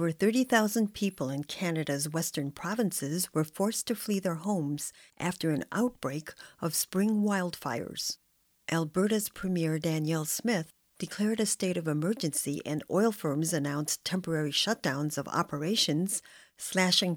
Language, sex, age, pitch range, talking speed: English, female, 50-69, 160-200 Hz, 130 wpm